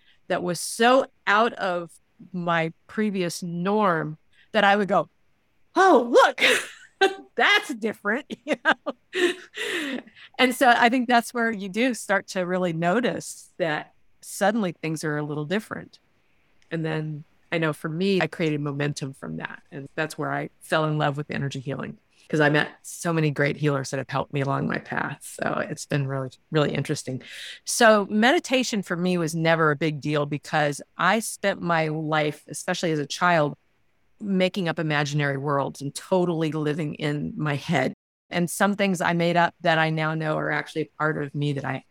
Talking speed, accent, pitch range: 175 wpm, American, 150-205 Hz